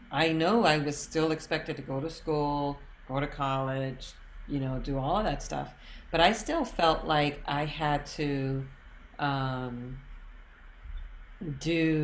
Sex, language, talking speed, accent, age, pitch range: female, English, 150 wpm, American, 40-59, 130-160 Hz